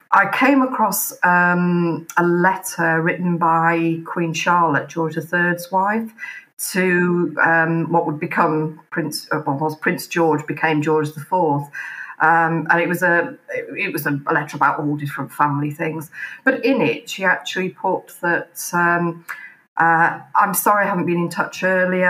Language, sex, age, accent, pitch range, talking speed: English, female, 40-59, British, 160-185 Hz, 150 wpm